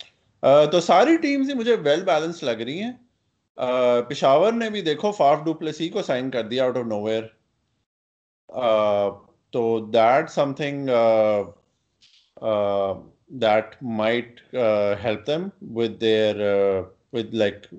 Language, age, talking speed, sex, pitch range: Urdu, 30-49, 100 wpm, male, 110-155 Hz